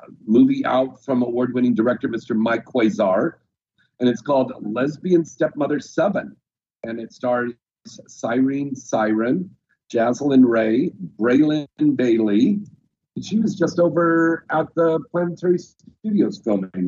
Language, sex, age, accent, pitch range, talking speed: English, male, 50-69, American, 125-175 Hz, 115 wpm